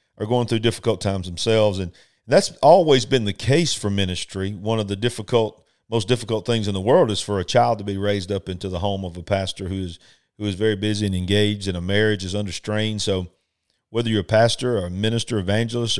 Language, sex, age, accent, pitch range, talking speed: English, male, 50-69, American, 100-115 Hz, 225 wpm